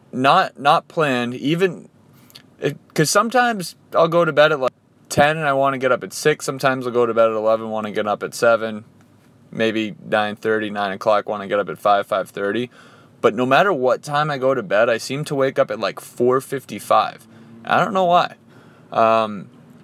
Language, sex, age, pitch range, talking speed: English, male, 20-39, 120-155 Hz, 220 wpm